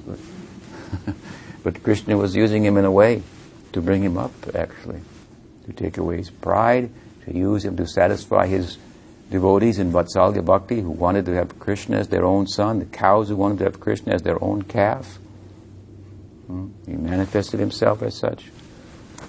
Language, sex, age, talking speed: English, male, 60-79, 170 wpm